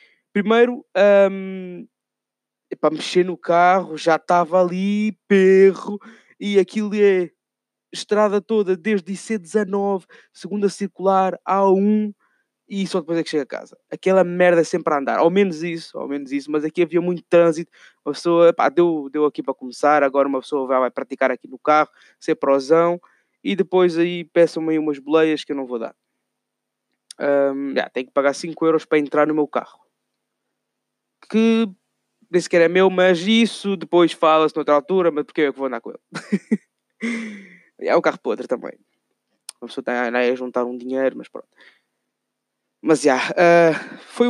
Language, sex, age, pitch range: Portuguese, male, 20-39, 140-190 Hz